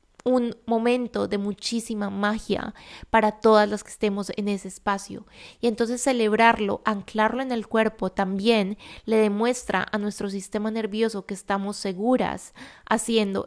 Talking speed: 140 wpm